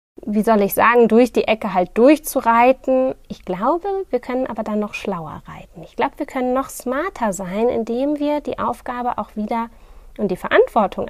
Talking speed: 185 wpm